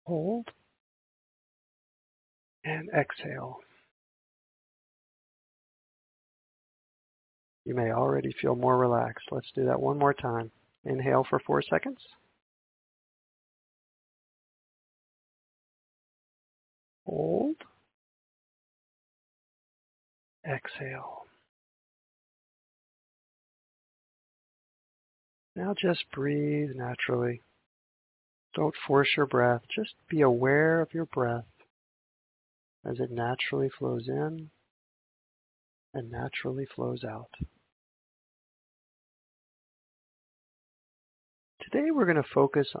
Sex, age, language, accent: male, 50-69, English, American